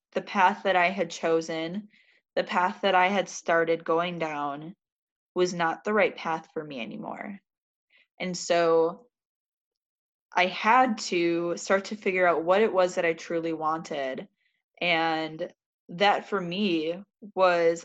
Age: 10-29